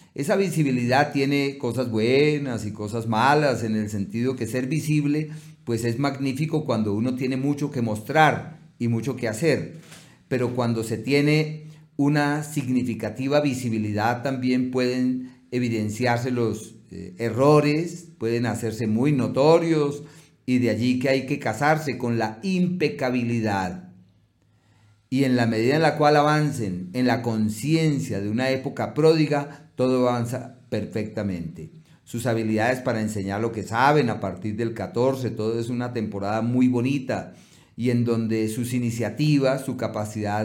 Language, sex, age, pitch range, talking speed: Spanish, male, 40-59, 110-140 Hz, 140 wpm